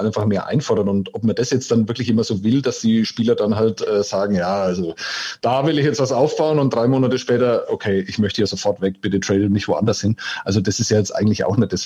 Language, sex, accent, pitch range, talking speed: German, male, German, 95-115 Hz, 265 wpm